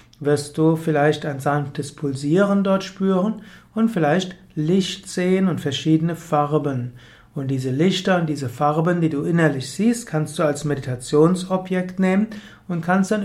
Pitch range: 145-185 Hz